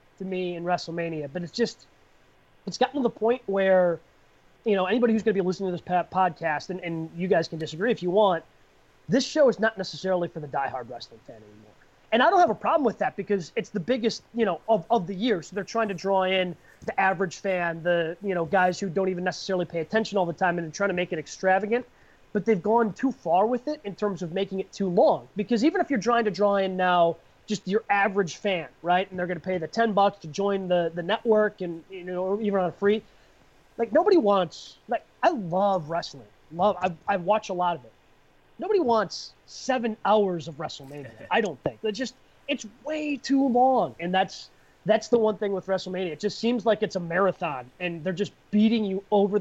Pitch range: 180-220 Hz